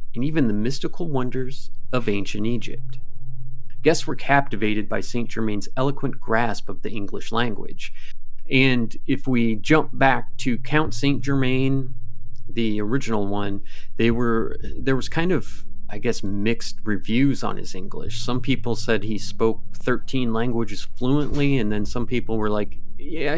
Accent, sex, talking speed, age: American, male, 155 wpm, 30-49